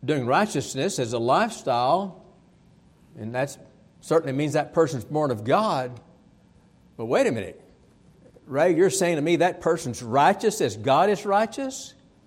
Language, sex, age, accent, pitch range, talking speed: English, male, 60-79, American, 150-205 Hz, 145 wpm